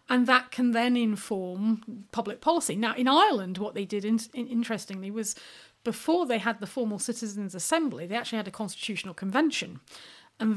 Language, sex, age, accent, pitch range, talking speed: English, female, 40-59, British, 200-245 Hz, 165 wpm